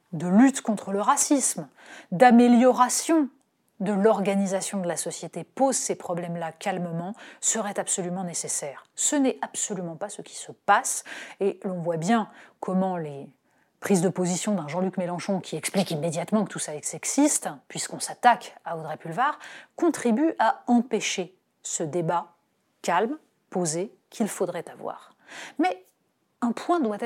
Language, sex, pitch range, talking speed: French, female, 180-240 Hz, 145 wpm